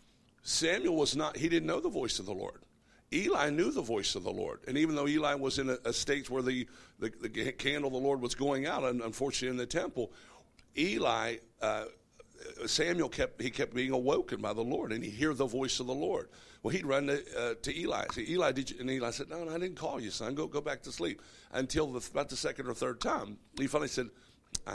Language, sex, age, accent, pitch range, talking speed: English, male, 60-79, American, 120-150 Hz, 245 wpm